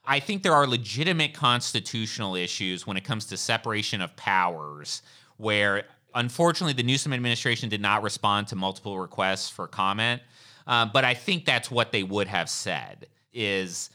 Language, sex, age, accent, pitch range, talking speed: English, male, 30-49, American, 105-130 Hz, 165 wpm